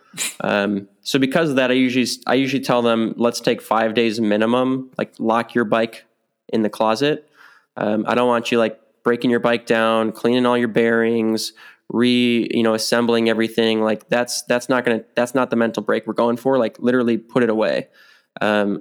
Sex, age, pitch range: male, 20-39, 110-125 Hz